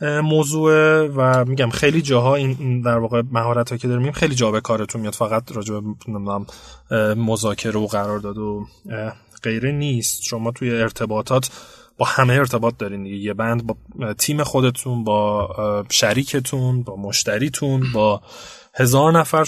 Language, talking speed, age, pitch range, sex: Persian, 130 wpm, 20-39, 115-145 Hz, male